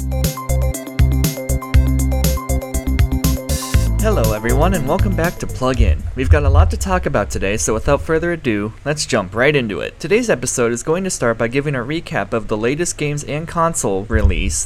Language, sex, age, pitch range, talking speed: English, male, 20-39, 105-155 Hz, 170 wpm